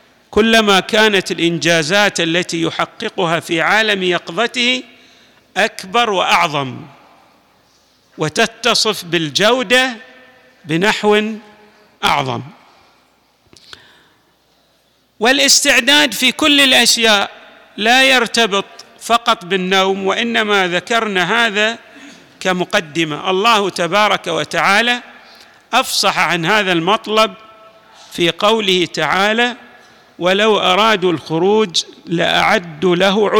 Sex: male